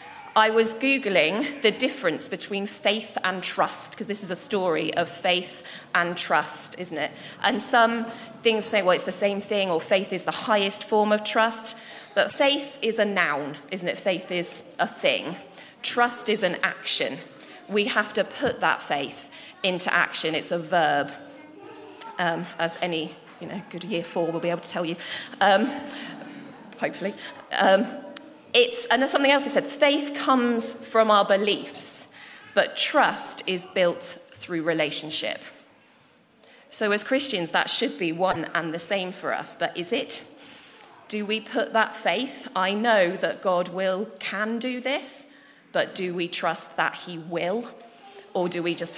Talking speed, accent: 170 wpm, British